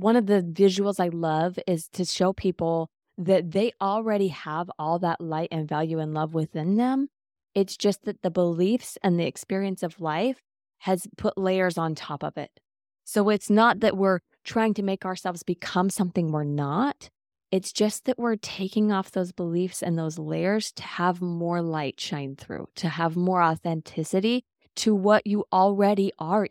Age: 20-39